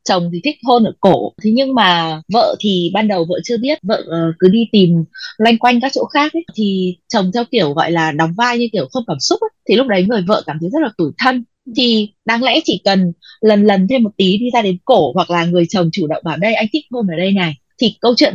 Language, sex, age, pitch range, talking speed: Vietnamese, female, 20-39, 175-235 Hz, 270 wpm